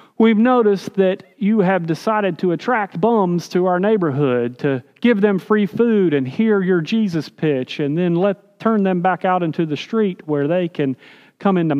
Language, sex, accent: English, male, American